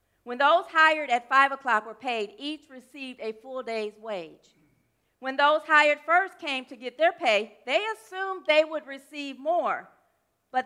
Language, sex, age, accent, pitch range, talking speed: English, female, 50-69, American, 235-310 Hz, 170 wpm